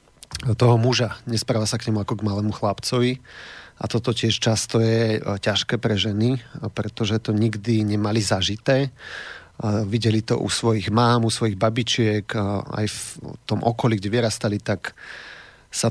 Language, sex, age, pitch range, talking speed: Slovak, male, 40-59, 105-120 Hz, 145 wpm